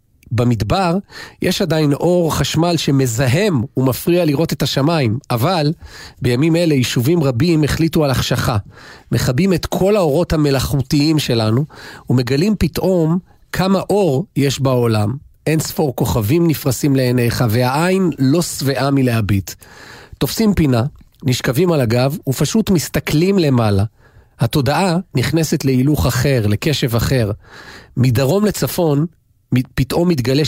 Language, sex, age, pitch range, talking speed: Hebrew, male, 40-59, 125-165 Hz, 110 wpm